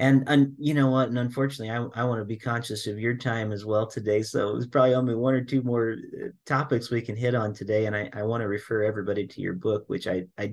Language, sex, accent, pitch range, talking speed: English, male, American, 100-125 Hz, 260 wpm